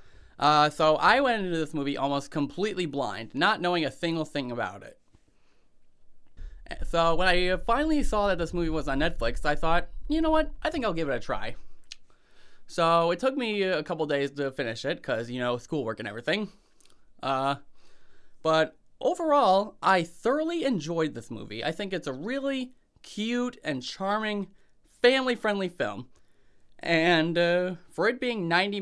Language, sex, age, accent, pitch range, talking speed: English, male, 20-39, American, 135-190 Hz, 165 wpm